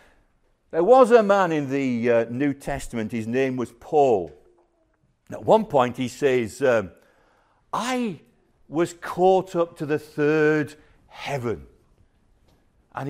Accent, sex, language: British, male, English